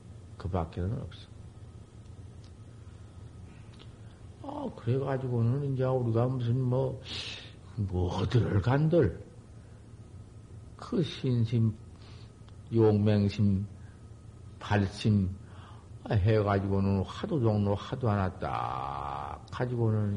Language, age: Korean, 50-69